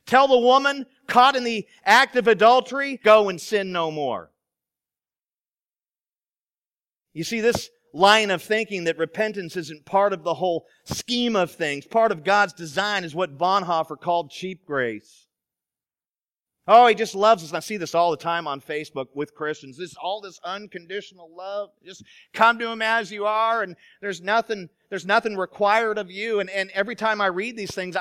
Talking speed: 180 wpm